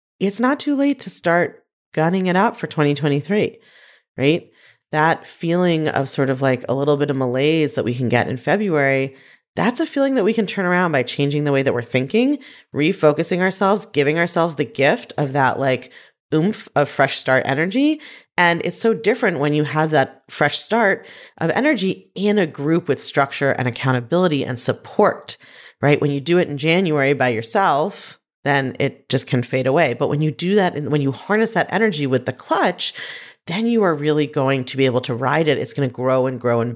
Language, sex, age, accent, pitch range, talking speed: English, female, 30-49, American, 130-175 Hz, 205 wpm